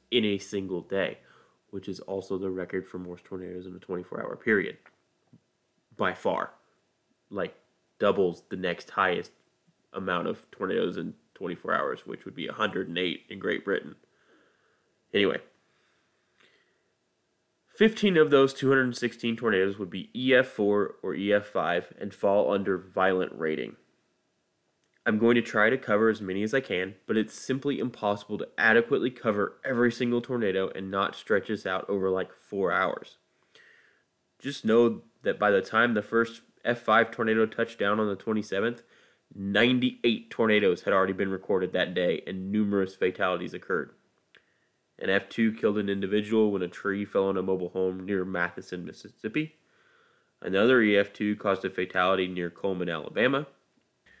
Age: 20-39